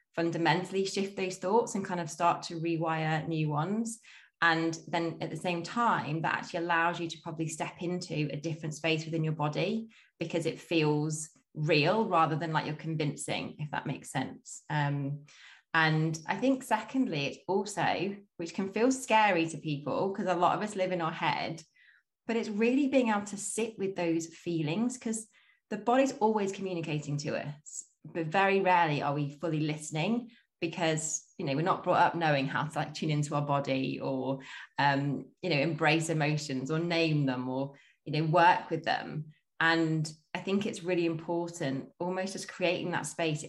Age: 20-39